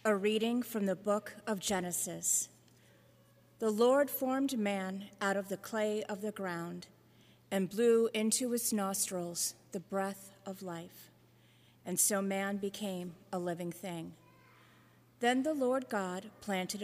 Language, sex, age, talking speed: English, female, 40-59, 140 wpm